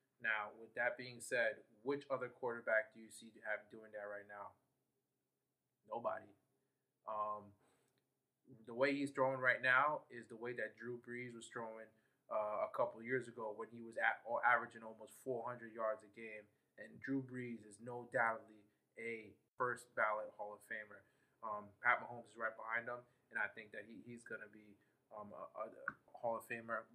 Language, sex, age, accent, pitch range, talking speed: English, male, 20-39, American, 110-125 Hz, 185 wpm